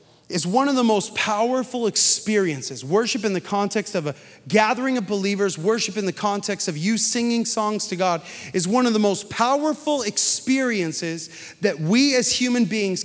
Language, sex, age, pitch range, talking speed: English, male, 30-49, 200-260 Hz, 175 wpm